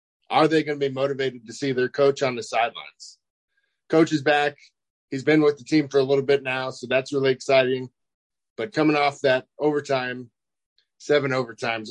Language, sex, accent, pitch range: English, male, American, 125-145 Hz